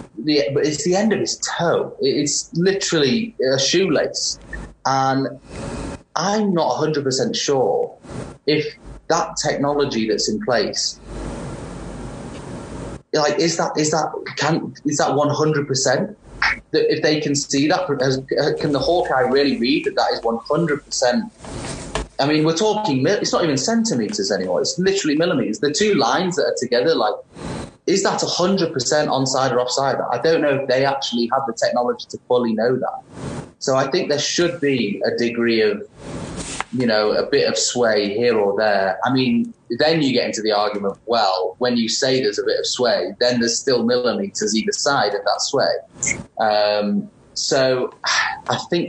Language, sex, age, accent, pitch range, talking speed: English, male, 30-49, British, 120-185 Hz, 165 wpm